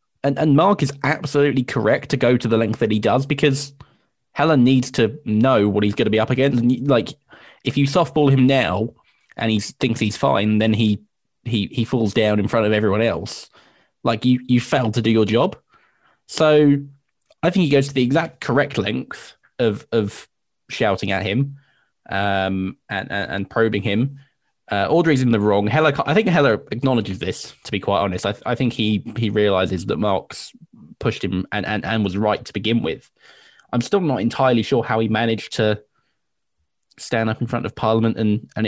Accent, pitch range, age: British, 105-130 Hz, 10-29